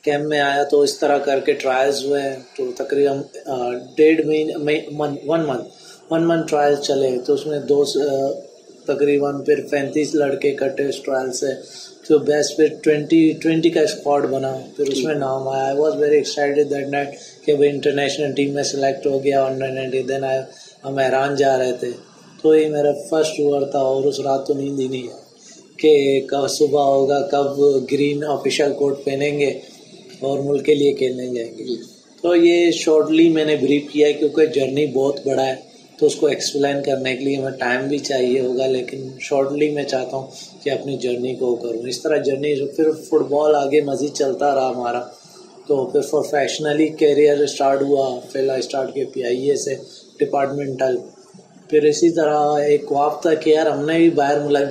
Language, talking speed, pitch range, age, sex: Urdu, 165 wpm, 135-150 Hz, 20-39, male